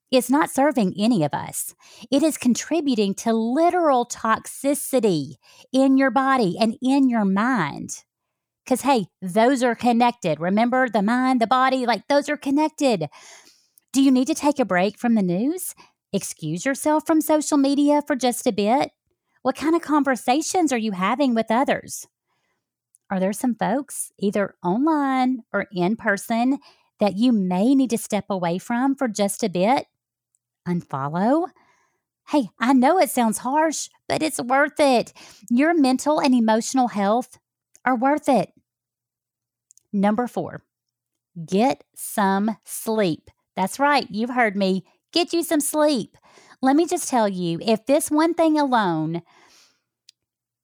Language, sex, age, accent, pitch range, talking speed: English, female, 40-59, American, 195-275 Hz, 150 wpm